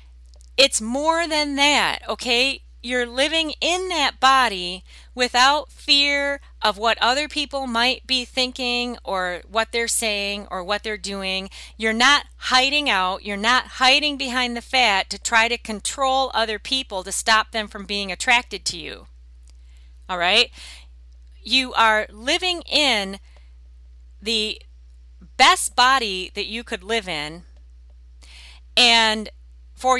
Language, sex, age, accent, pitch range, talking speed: English, female, 40-59, American, 180-250 Hz, 135 wpm